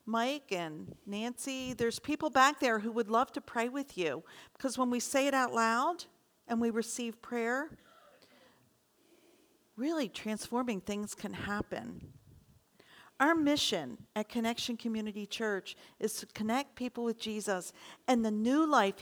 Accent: American